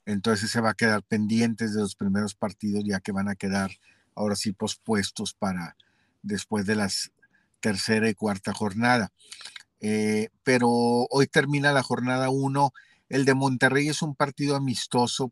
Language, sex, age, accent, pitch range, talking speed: Spanish, male, 50-69, Mexican, 105-120 Hz, 155 wpm